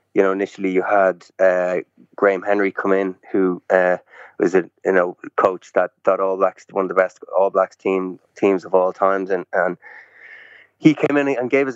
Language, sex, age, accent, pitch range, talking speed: English, male, 20-39, Irish, 95-110 Hz, 205 wpm